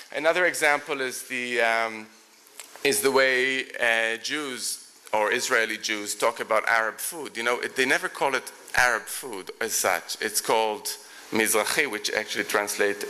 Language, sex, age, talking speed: English, male, 30-49, 150 wpm